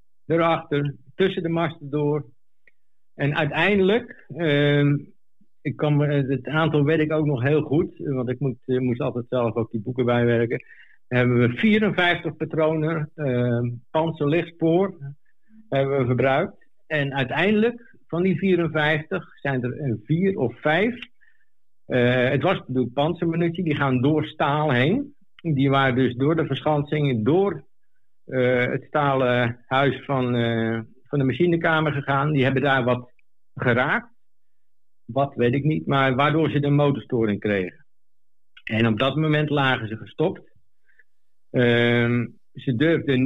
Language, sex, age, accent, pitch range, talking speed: Dutch, male, 60-79, Dutch, 120-155 Hz, 140 wpm